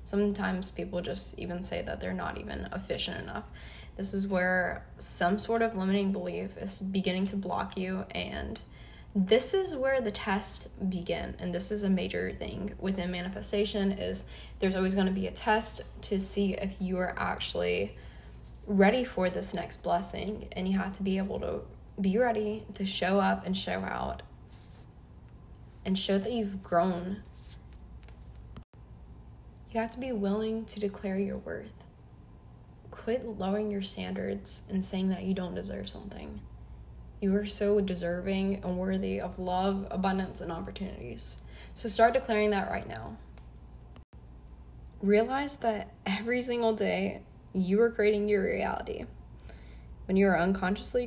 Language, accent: English, American